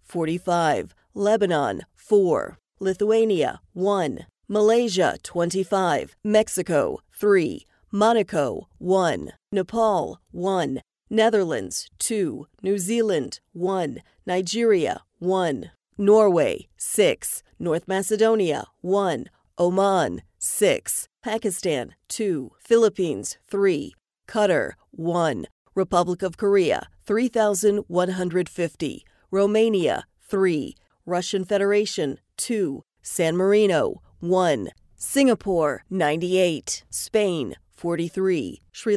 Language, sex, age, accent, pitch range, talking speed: English, female, 40-59, American, 175-210 Hz, 75 wpm